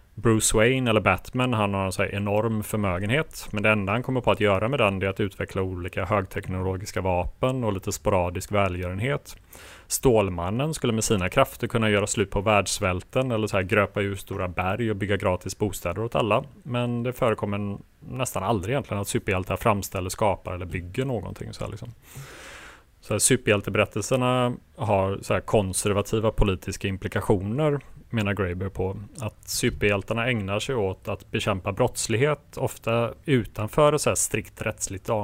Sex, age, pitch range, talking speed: male, 30-49, 95-115 Hz, 155 wpm